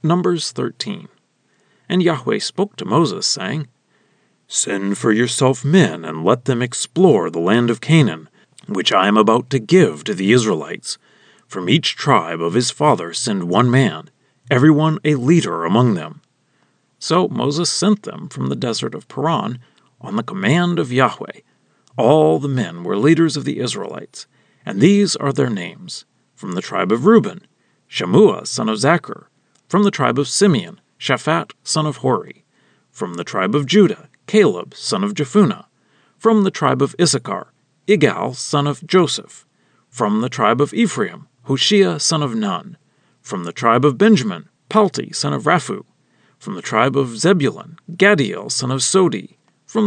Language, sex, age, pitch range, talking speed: English, male, 40-59, 135-195 Hz, 160 wpm